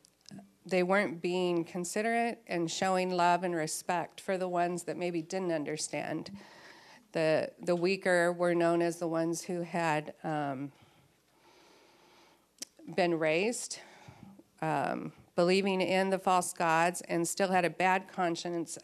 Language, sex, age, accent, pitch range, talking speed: English, female, 40-59, American, 165-195 Hz, 130 wpm